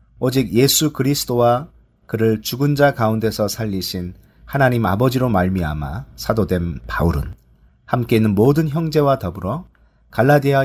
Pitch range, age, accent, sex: 90-130 Hz, 40-59, native, male